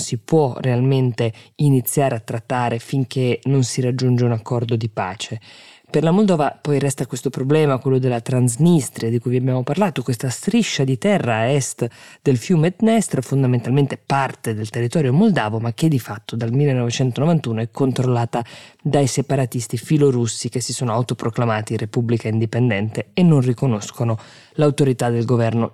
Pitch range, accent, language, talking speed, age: 115-140 Hz, native, Italian, 155 wpm, 20-39